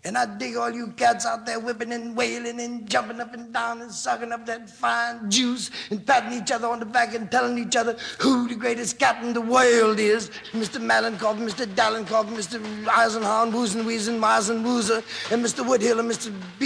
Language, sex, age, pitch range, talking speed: English, male, 60-79, 210-240 Hz, 200 wpm